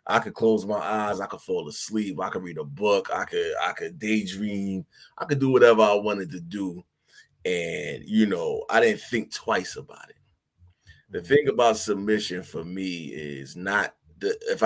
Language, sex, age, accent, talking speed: English, male, 30-49, American, 190 wpm